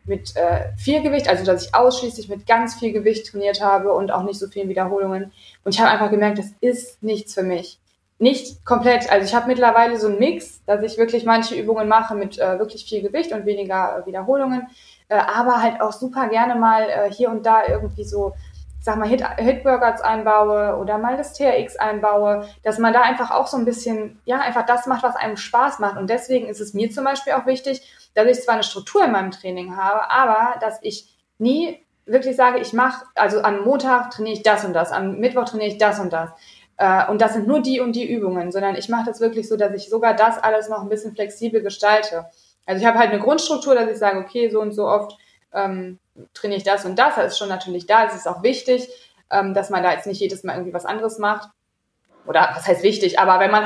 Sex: female